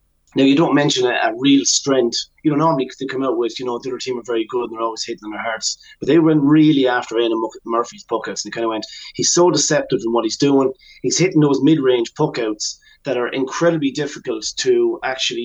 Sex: male